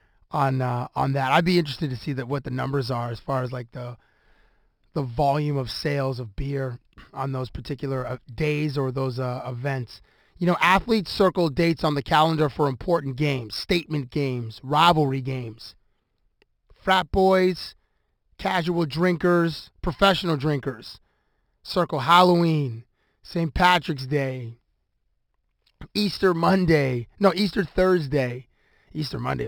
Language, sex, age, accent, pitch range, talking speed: English, male, 30-49, American, 135-175 Hz, 135 wpm